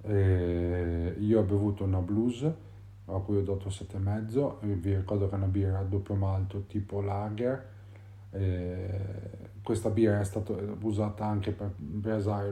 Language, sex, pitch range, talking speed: Italian, male, 95-110 Hz, 150 wpm